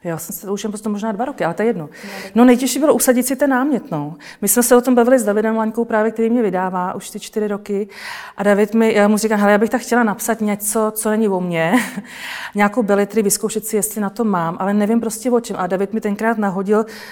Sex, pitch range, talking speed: female, 195-230 Hz, 240 wpm